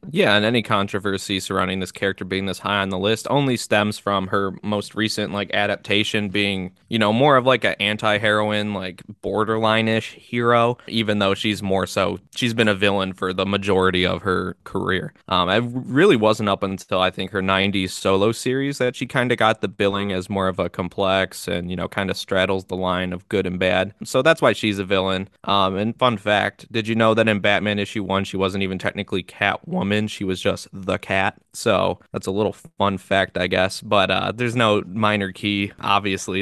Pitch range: 95-115 Hz